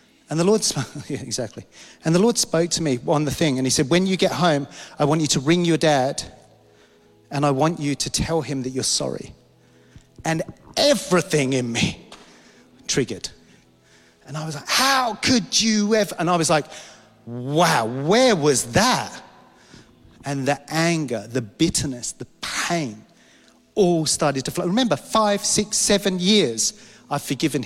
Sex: male